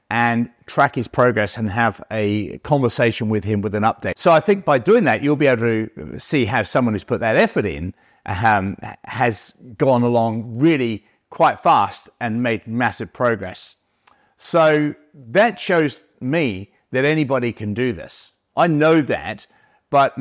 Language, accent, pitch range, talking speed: English, British, 110-140 Hz, 165 wpm